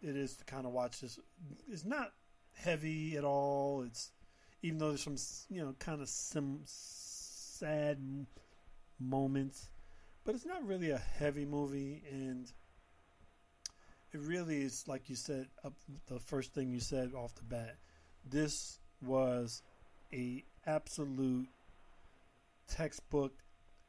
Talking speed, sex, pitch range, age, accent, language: 130 wpm, male, 120-145 Hz, 40-59, American, English